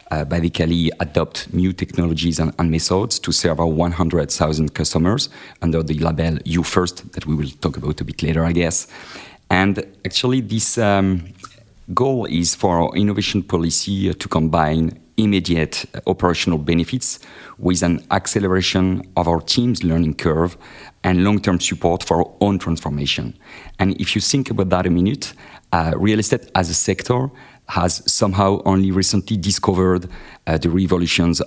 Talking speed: 155 wpm